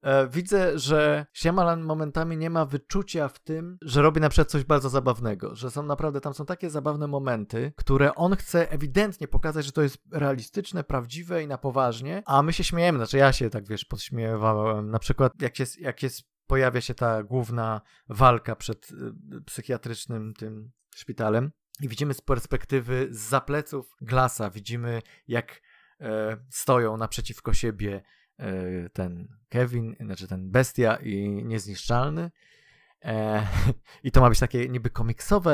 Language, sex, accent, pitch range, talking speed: Polish, male, native, 120-160 Hz, 150 wpm